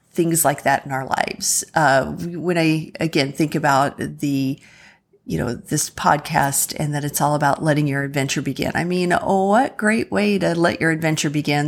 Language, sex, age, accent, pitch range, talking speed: English, female, 40-59, American, 150-195 Hz, 190 wpm